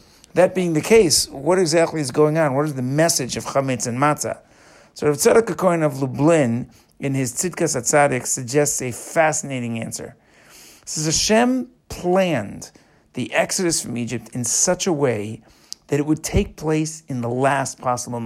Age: 50-69